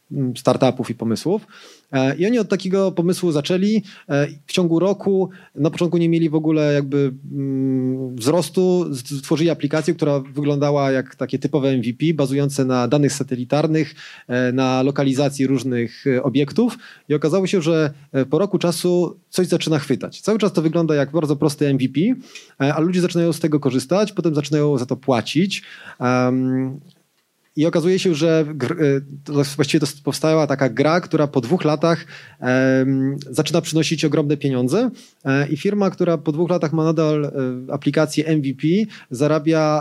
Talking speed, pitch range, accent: 145 wpm, 135-165 Hz, native